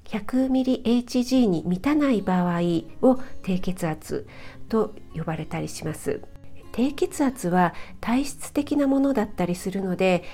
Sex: female